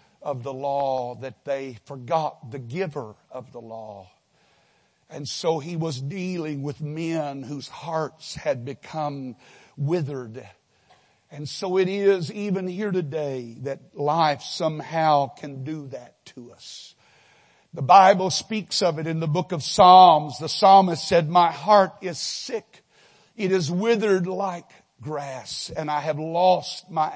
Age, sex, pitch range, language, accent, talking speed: 60-79, male, 140-180 Hz, English, American, 145 wpm